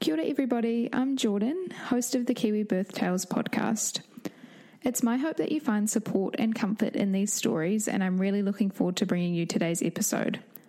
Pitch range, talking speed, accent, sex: 195-235 Hz, 190 wpm, Australian, female